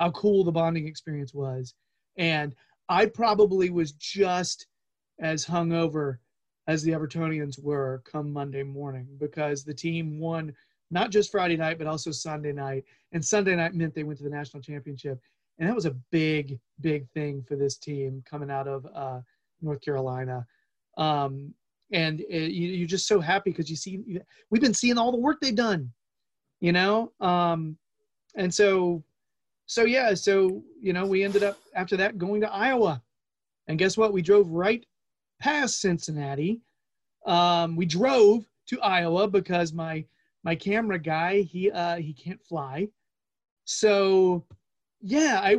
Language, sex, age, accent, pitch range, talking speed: English, male, 30-49, American, 150-205 Hz, 160 wpm